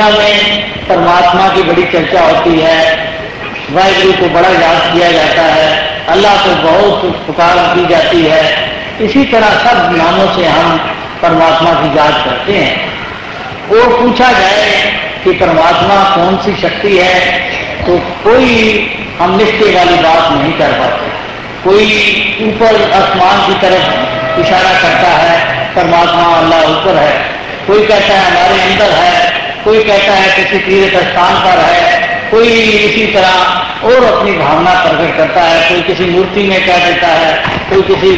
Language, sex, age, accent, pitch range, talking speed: Hindi, male, 50-69, native, 170-210 Hz, 150 wpm